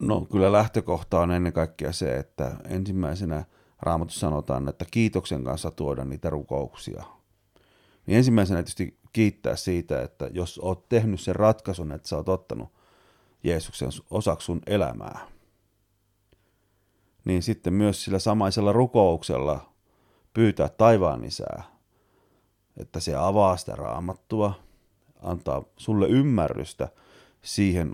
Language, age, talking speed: Finnish, 30-49, 115 wpm